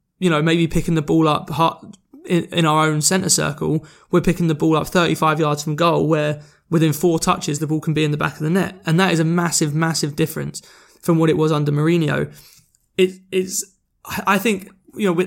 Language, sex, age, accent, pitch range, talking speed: English, male, 20-39, British, 150-175 Hz, 210 wpm